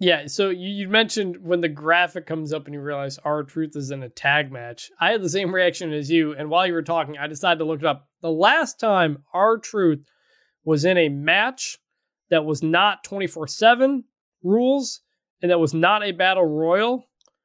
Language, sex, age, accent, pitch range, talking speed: English, male, 20-39, American, 150-200 Hz, 200 wpm